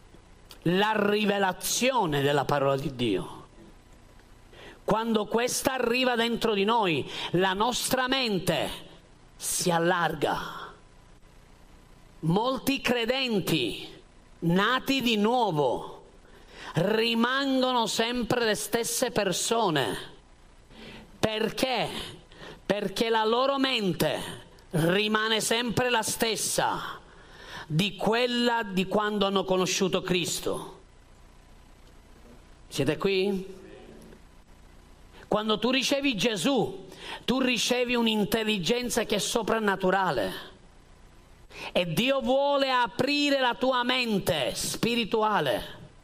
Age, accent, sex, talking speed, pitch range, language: 40-59, native, male, 80 wpm, 185-245 Hz, Italian